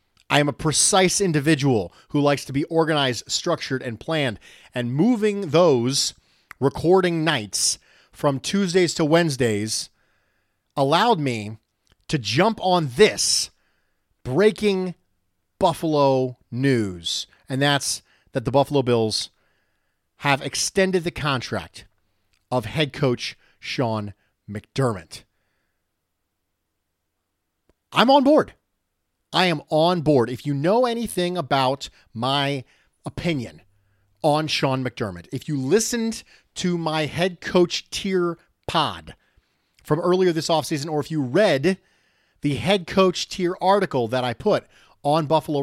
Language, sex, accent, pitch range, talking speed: English, male, American, 110-175 Hz, 120 wpm